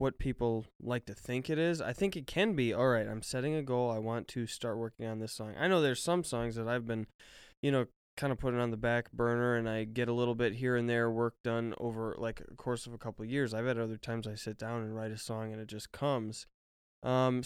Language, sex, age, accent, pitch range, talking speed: English, male, 20-39, American, 115-135 Hz, 270 wpm